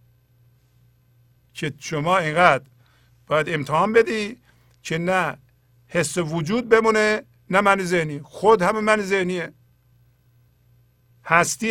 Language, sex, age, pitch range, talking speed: Persian, male, 50-69, 120-175 Hz, 95 wpm